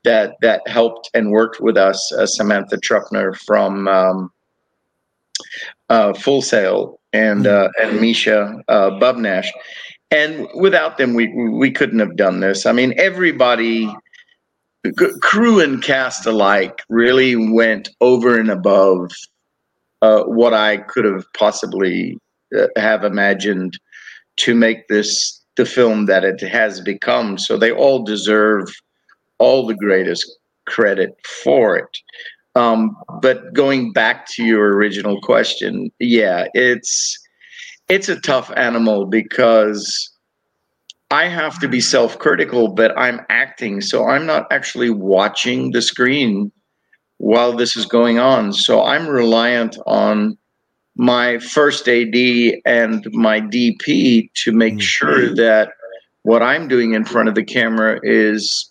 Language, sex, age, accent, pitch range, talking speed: English, male, 50-69, American, 105-130 Hz, 130 wpm